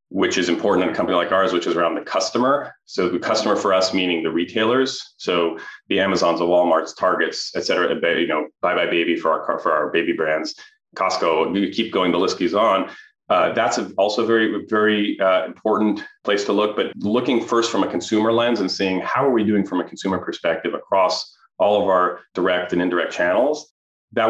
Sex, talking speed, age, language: male, 210 wpm, 30-49, English